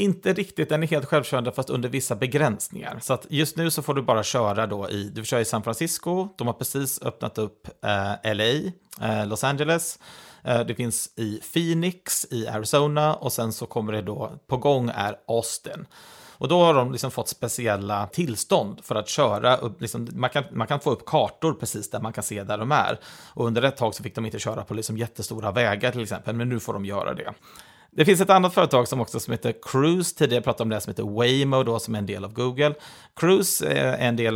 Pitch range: 110-150 Hz